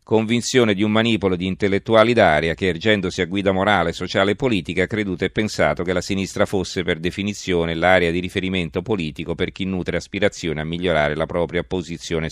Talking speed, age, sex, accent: 185 wpm, 40-59, male, native